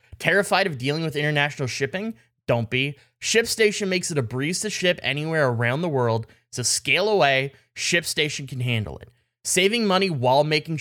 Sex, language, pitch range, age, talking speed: male, English, 125-185 Hz, 20-39, 170 wpm